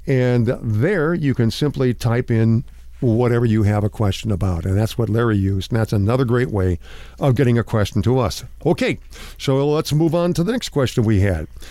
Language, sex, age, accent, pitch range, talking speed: English, male, 50-69, American, 100-140 Hz, 205 wpm